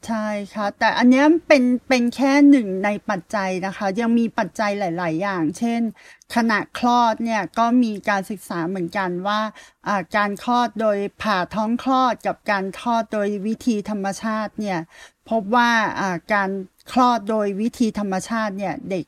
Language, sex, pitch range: Thai, female, 195-235 Hz